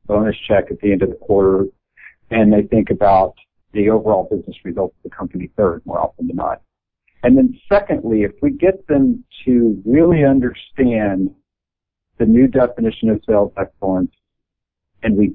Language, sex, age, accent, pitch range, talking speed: English, male, 50-69, American, 100-125 Hz, 165 wpm